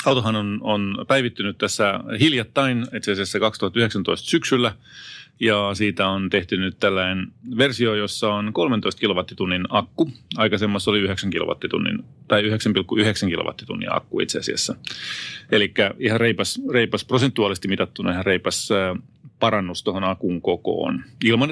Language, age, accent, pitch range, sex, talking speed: Finnish, 30-49, native, 95-120 Hz, male, 125 wpm